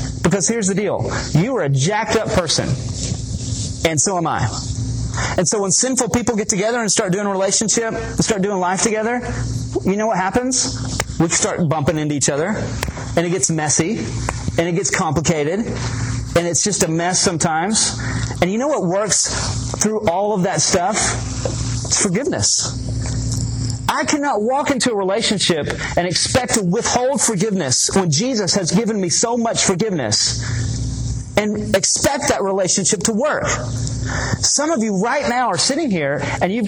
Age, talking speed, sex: 30-49, 165 wpm, male